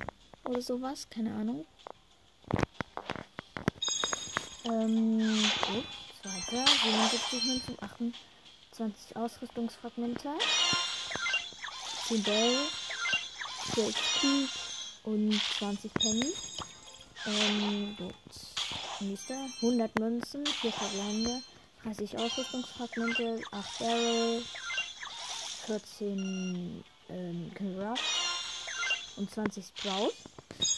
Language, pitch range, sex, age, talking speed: German, 205-245 Hz, female, 20-39, 60 wpm